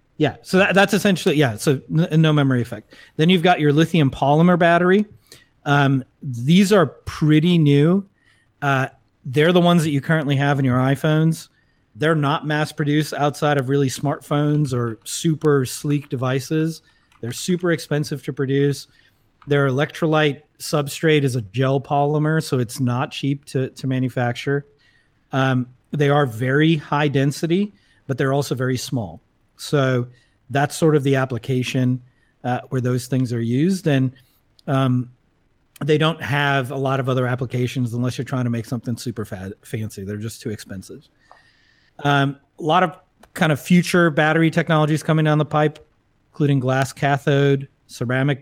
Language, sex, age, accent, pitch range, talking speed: English, male, 30-49, American, 125-150 Hz, 155 wpm